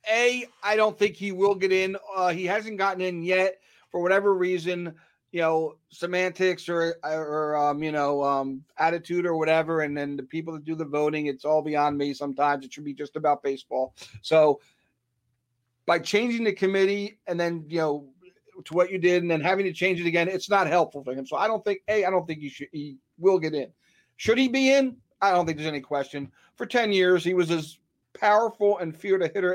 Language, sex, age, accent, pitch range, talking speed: English, male, 40-59, American, 150-190 Hz, 220 wpm